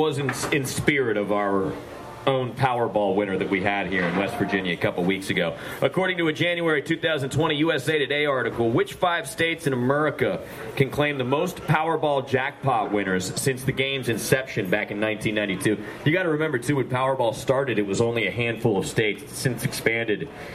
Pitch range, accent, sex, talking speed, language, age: 115-155 Hz, American, male, 195 wpm, English, 30-49